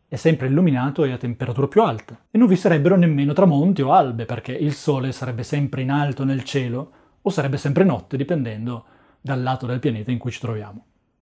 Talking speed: 200 wpm